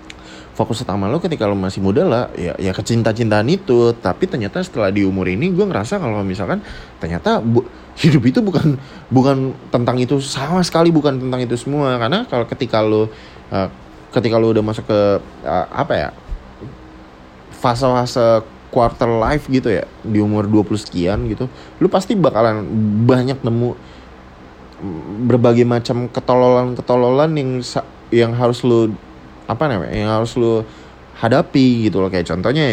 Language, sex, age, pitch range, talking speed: Indonesian, male, 20-39, 90-125 Hz, 150 wpm